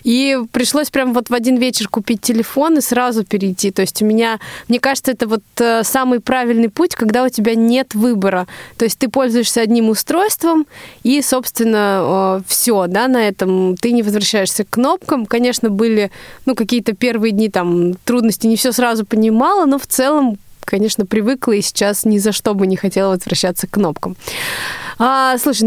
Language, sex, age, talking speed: Russian, female, 20-39, 175 wpm